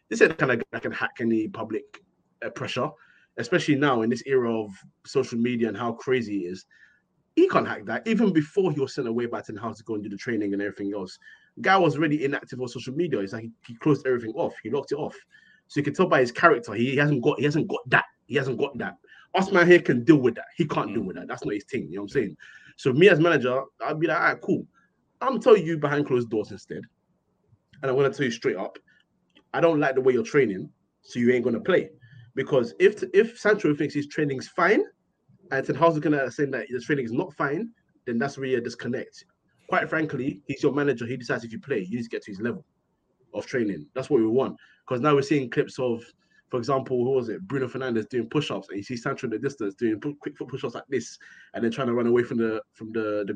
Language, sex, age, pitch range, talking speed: English, male, 20-39, 115-150 Hz, 260 wpm